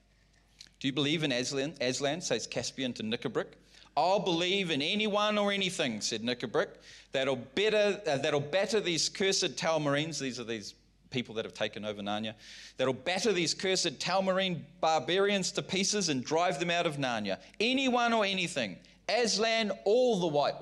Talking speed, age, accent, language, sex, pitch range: 160 wpm, 30-49, Australian, English, male, 115-160 Hz